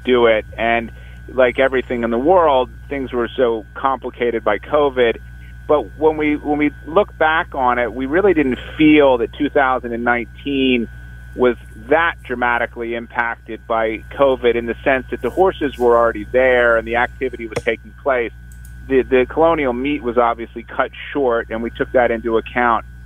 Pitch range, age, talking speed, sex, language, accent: 90-120 Hz, 30-49, 165 wpm, male, English, American